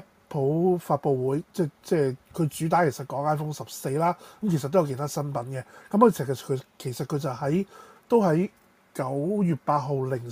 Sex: male